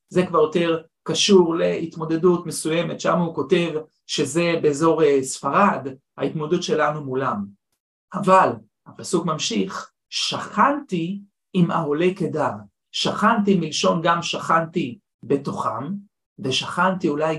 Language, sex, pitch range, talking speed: Hebrew, male, 150-185 Hz, 100 wpm